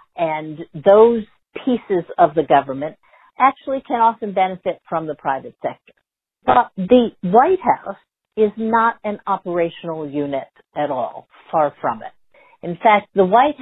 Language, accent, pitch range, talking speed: English, American, 175-225 Hz, 140 wpm